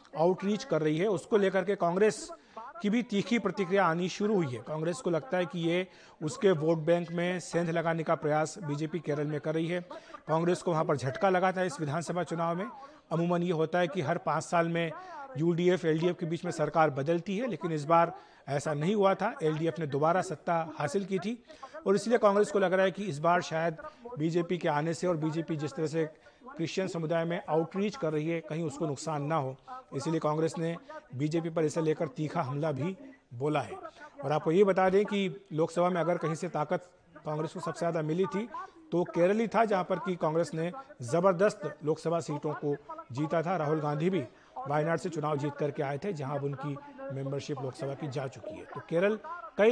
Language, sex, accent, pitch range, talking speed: Hindi, male, native, 155-195 Hz, 210 wpm